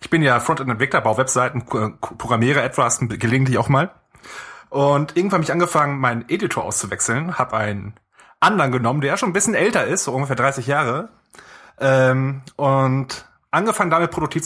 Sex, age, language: male, 30-49, German